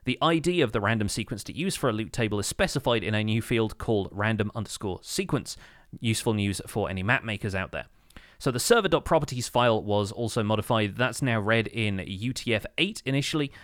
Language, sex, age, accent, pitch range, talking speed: English, male, 30-49, British, 100-140 Hz, 190 wpm